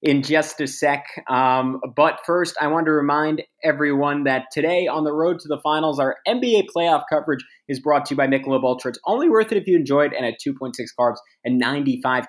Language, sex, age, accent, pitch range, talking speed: English, male, 20-39, American, 115-145 Hz, 220 wpm